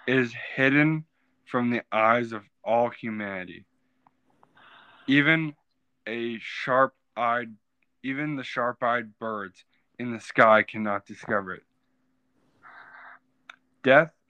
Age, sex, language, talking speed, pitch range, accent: 20-39, male, English, 90 wpm, 110-130 Hz, American